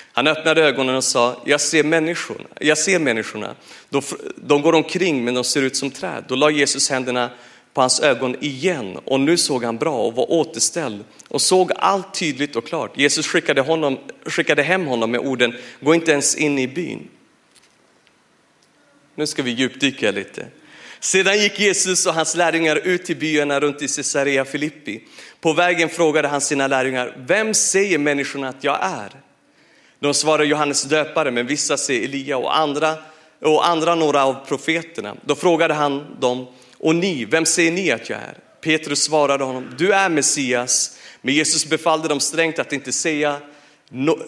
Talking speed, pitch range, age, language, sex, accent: 175 wpm, 135-165 Hz, 40-59, Swedish, male, native